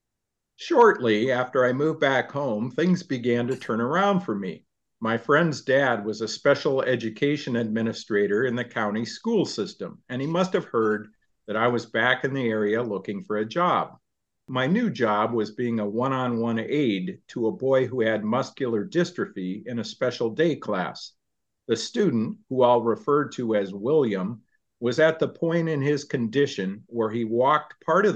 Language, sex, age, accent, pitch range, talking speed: English, male, 50-69, American, 110-145 Hz, 175 wpm